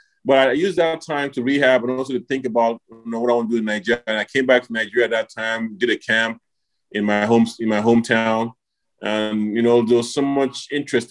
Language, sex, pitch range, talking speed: English, male, 115-135 Hz, 255 wpm